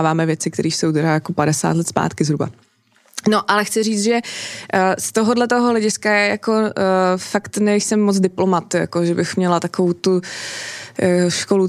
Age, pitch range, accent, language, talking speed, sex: 20-39, 175-200 Hz, native, Czech, 160 wpm, female